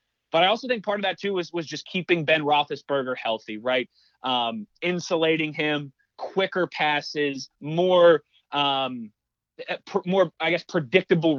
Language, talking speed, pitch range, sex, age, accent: English, 135 wpm, 145-170 Hz, male, 30-49, American